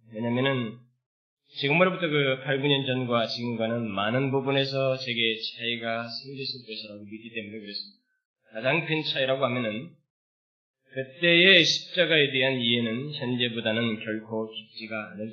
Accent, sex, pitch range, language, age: native, male, 120-150 Hz, Korean, 20-39